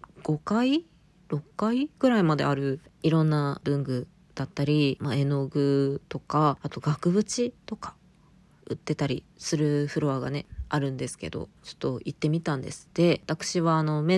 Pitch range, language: 145-195 Hz, Japanese